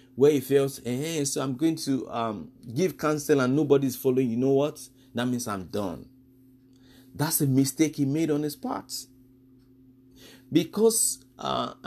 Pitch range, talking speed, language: 130-165 Hz, 160 wpm, English